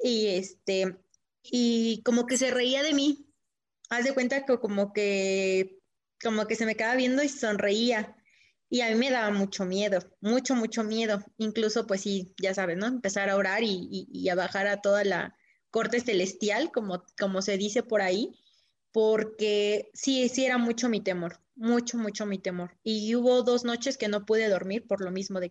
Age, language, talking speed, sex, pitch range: 20-39, Spanish, 190 wpm, female, 205-245 Hz